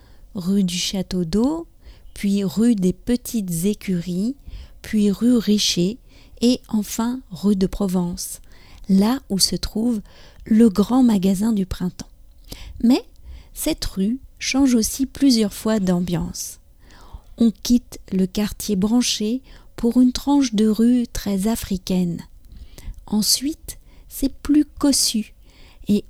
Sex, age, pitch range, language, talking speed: female, 40-59, 190-240 Hz, English, 115 wpm